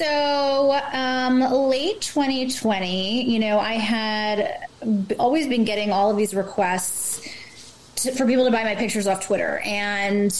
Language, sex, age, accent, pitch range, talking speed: English, female, 20-39, American, 200-250 Hz, 145 wpm